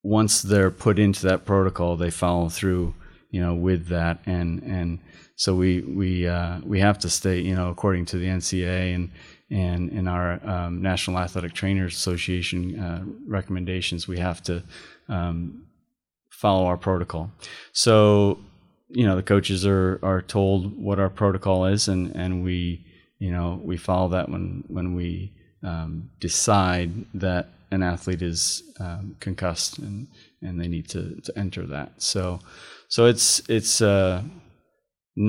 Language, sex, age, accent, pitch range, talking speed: English, male, 30-49, American, 85-95 Hz, 155 wpm